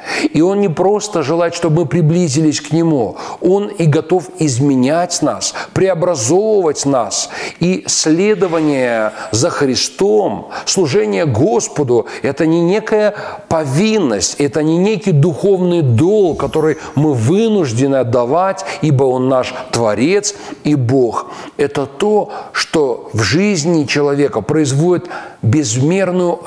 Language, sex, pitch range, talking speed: Russian, male, 135-185 Hz, 115 wpm